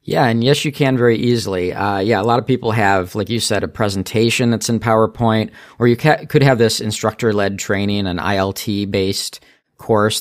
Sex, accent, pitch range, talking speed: male, American, 100-115 Hz, 205 wpm